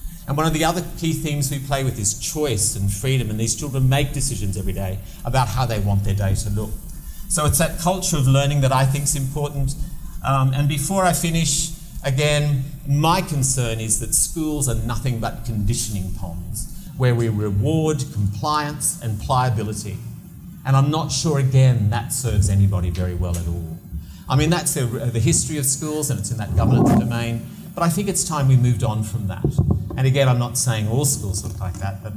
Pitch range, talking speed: 110-140 Hz, 200 wpm